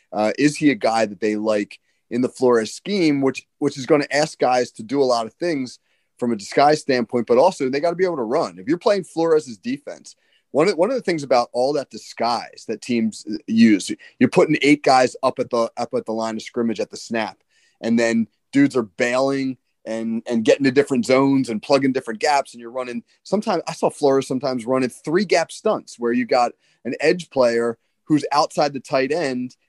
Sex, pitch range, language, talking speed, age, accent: male, 115-155 Hz, English, 225 wpm, 30-49, American